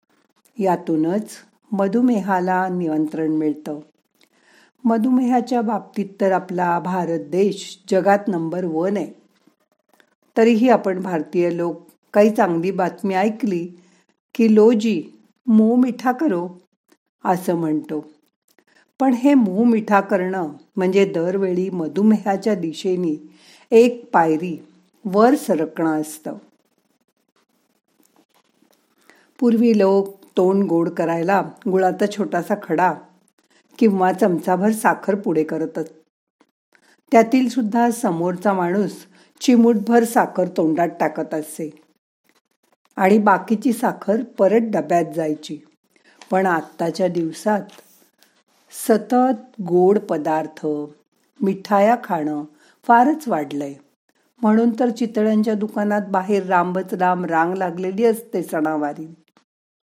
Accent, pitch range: native, 170-225 Hz